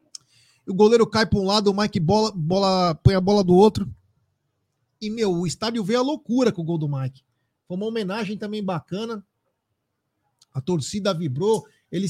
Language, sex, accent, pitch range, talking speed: Portuguese, male, Brazilian, 150-205 Hz, 180 wpm